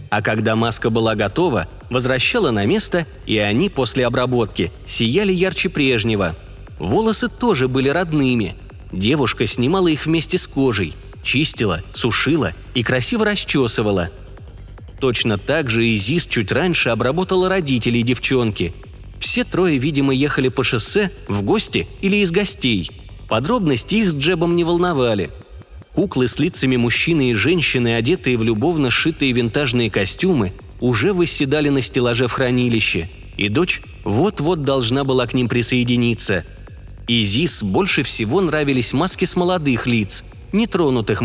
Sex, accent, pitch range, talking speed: male, native, 105-150 Hz, 130 wpm